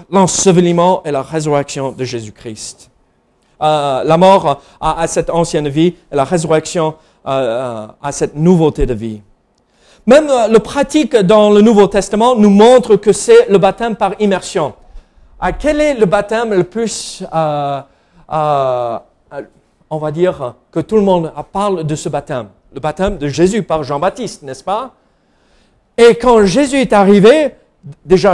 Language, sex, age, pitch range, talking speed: French, male, 40-59, 160-235 Hz, 155 wpm